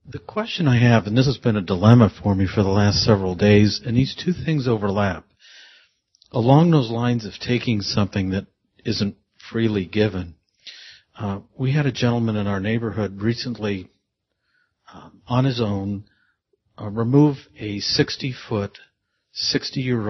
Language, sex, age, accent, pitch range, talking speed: English, male, 50-69, American, 100-125 Hz, 155 wpm